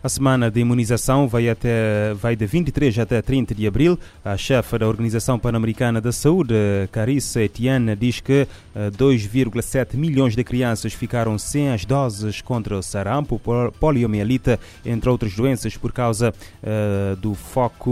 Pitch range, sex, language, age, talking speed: 110-125 Hz, male, Portuguese, 20-39, 145 wpm